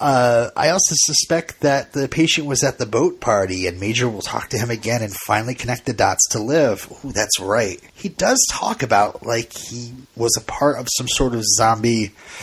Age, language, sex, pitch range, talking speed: 30-49, English, male, 115-155 Hz, 210 wpm